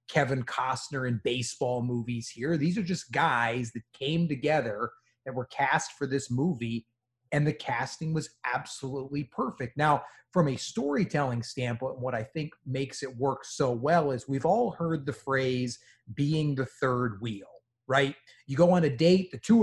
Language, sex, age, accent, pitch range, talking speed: English, male, 30-49, American, 130-160 Hz, 170 wpm